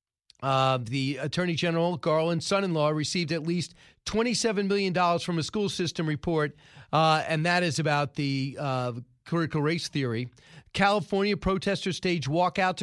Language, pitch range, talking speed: English, 150-190 Hz, 140 wpm